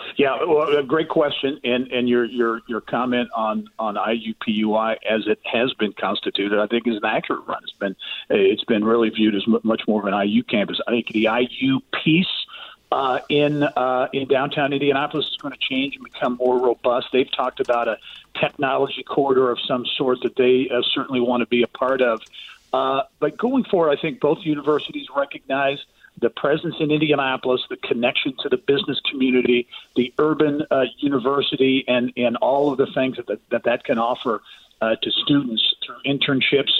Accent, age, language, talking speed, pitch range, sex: American, 40-59, English, 190 wpm, 120-145 Hz, male